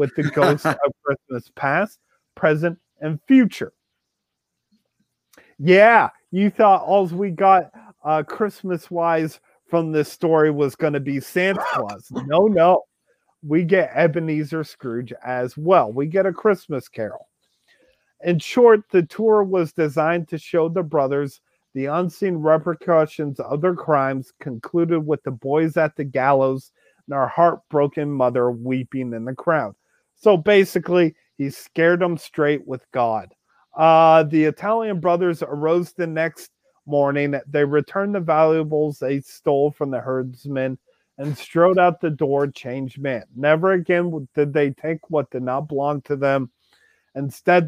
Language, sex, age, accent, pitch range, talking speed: English, male, 40-59, American, 140-175 Hz, 145 wpm